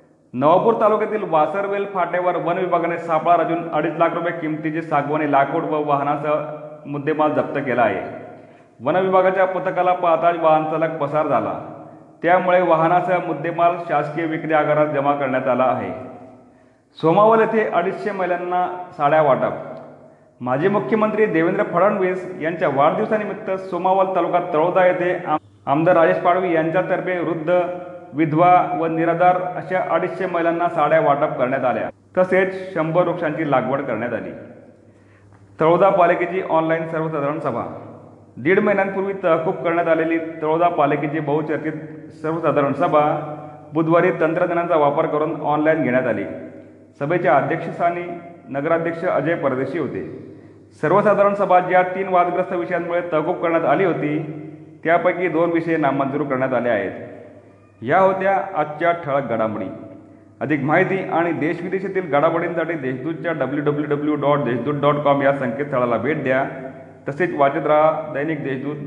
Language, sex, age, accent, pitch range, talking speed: Marathi, male, 30-49, native, 150-180 Hz, 120 wpm